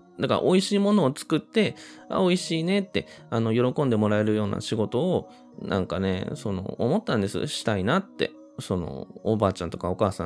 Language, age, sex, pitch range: Japanese, 20-39, male, 95-150 Hz